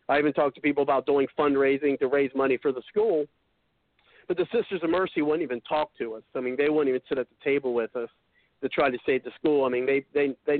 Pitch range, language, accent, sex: 130-155 Hz, English, American, male